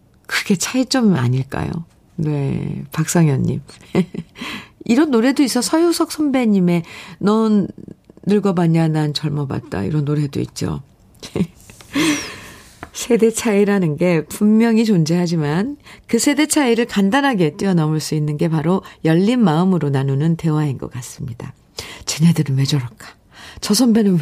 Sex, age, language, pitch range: female, 50-69, Korean, 155-215 Hz